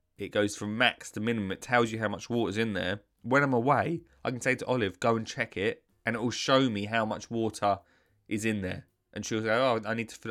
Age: 20-39